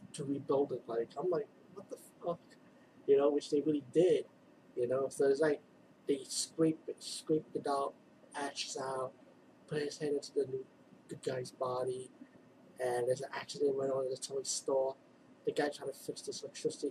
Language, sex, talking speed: English, male, 190 wpm